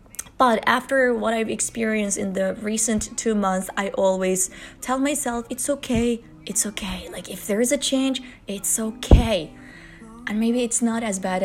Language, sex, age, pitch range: Chinese, female, 20-39, 190-240 Hz